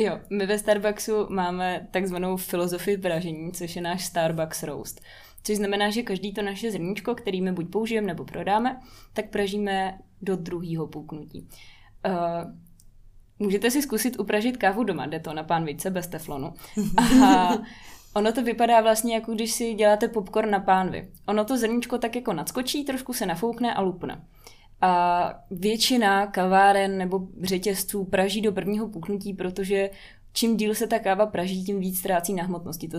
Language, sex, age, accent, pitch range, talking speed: Czech, female, 20-39, native, 180-210 Hz, 160 wpm